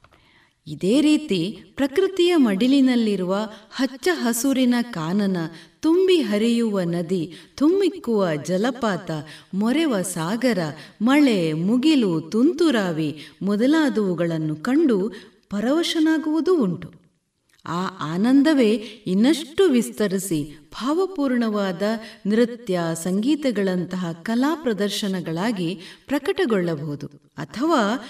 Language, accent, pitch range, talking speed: Kannada, native, 180-285 Hz, 65 wpm